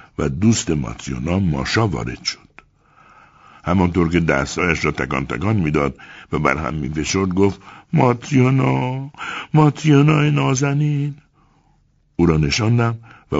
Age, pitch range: 60-79, 120-160 Hz